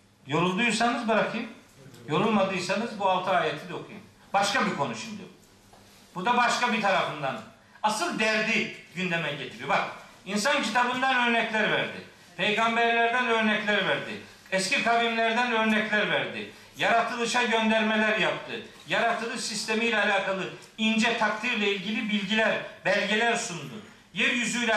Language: Turkish